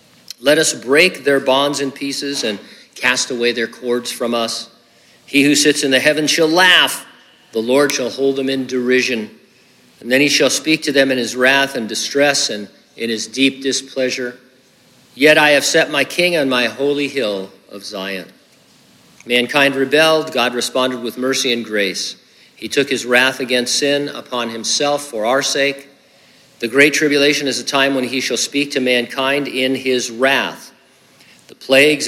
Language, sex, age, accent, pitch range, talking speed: English, male, 50-69, American, 120-140 Hz, 175 wpm